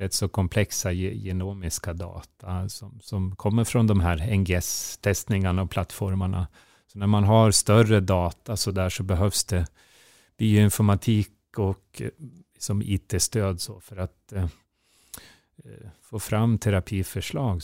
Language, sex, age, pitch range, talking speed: Swedish, male, 30-49, 90-110 Hz, 125 wpm